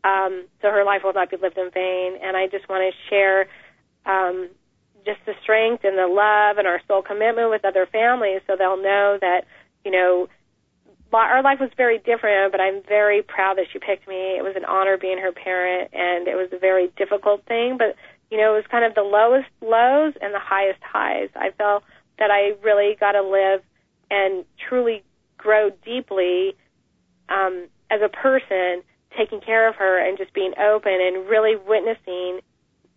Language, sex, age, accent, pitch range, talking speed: English, female, 30-49, American, 185-215 Hz, 190 wpm